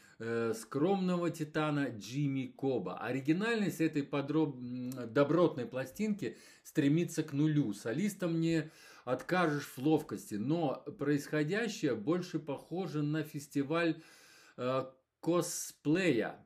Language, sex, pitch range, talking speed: Russian, male, 130-170 Hz, 90 wpm